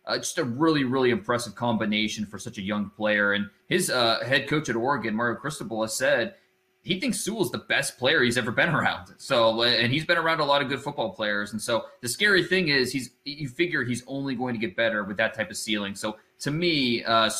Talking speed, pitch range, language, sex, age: 235 wpm, 110-135 Hz, English, male, 20-39